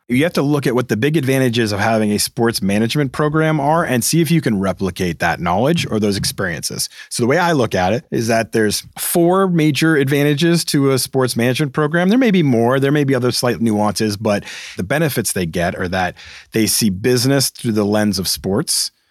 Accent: American